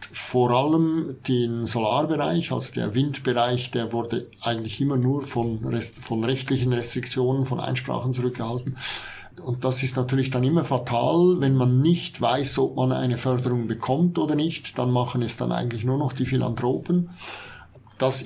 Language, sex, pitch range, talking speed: German, male, 125-145 Hz, 155 wpm